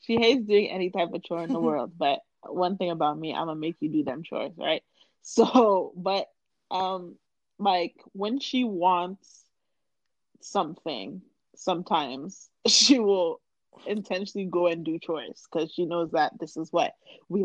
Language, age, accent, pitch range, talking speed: English, 20-39, American, 160-200 Hz, 165 wpm